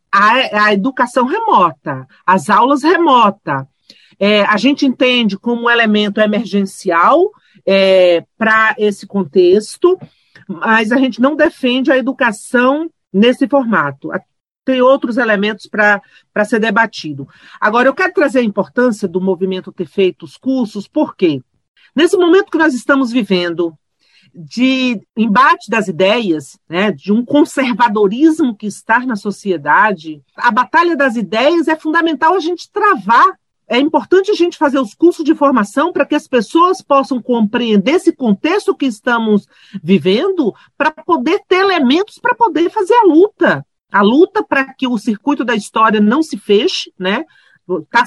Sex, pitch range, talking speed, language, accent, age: male, 205-310 Hz, 145 wpm, Portuguese, Brazilian, 50-69